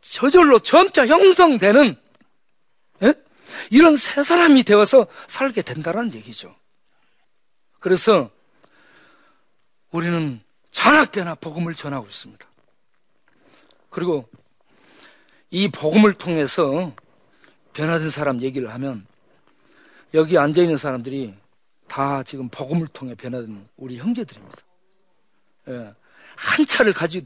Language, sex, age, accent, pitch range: Korean, male, 40-59, native, 135-205 Hz